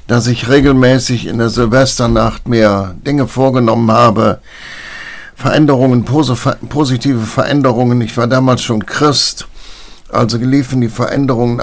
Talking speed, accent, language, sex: 115 wpm, German, German, male